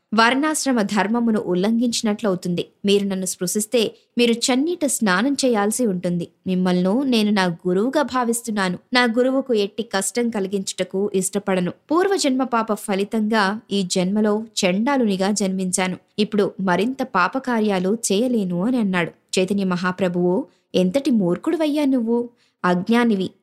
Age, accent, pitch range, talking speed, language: 20-39, native, 195-265 Hz, 105 wpm, Telugu